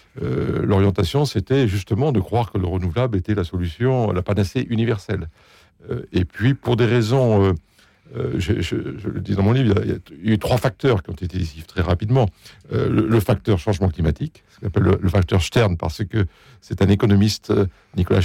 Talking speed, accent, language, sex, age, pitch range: 205 wpm, French, French, male, 60-79, 95-115 Hz